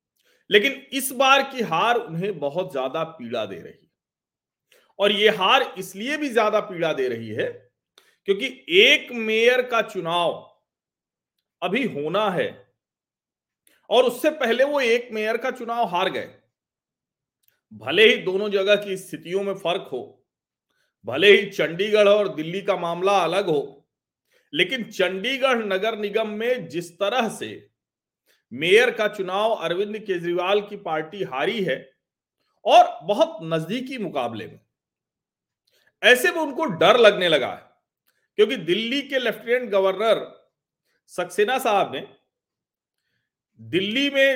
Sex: male